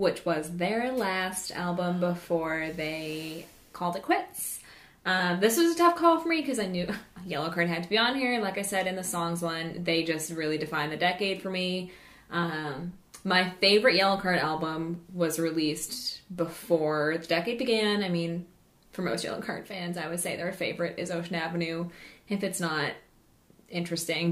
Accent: American